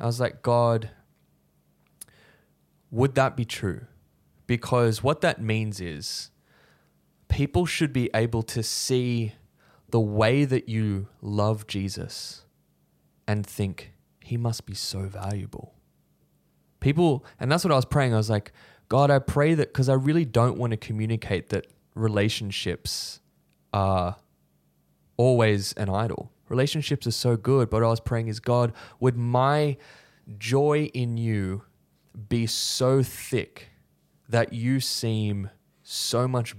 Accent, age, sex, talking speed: Australian, 20-39, male, 135 wpm